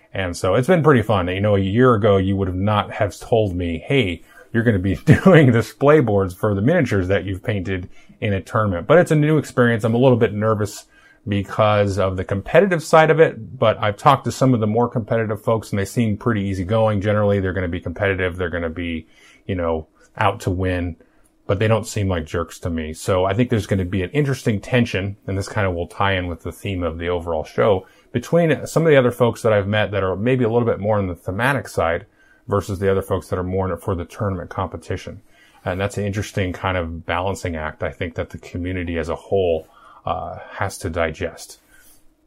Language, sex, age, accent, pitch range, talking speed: English, male, 30-49, American, 95-115 Hz, 235 wpm